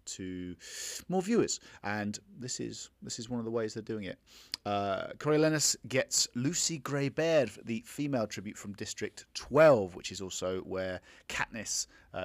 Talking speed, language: 160 wpm, English